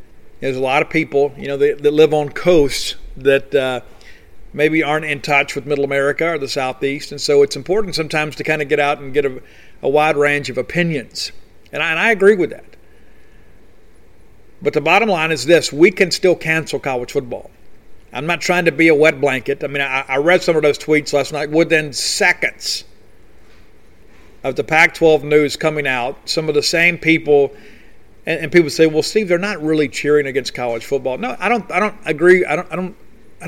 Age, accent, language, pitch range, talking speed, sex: 50-69, American, English, 140-165 Hz, 210 wpm, male